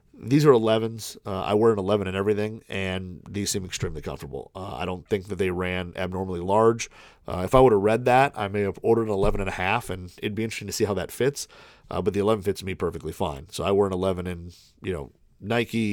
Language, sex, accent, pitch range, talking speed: English, male, American, 90-105 Hz, 250 wpm